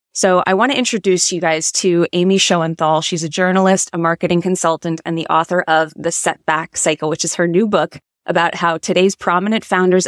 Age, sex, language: 20-39, female, English